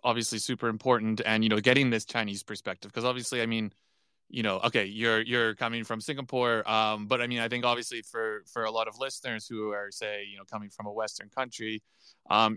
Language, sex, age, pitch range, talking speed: English, male, 20-39, 105-120 Hz, 220 wpm